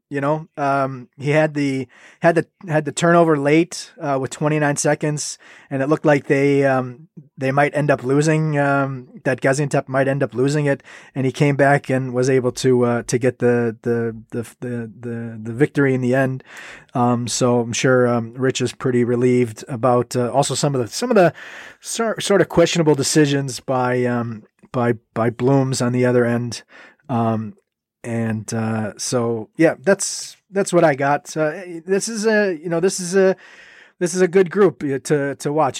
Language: English